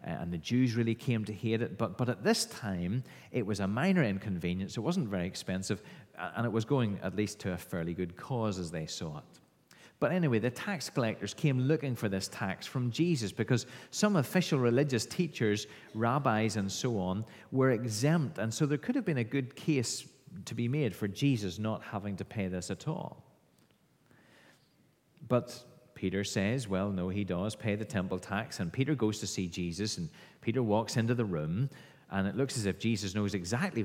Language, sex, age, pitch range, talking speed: English, male, 30-49, 100-140 Hz, 200 wpm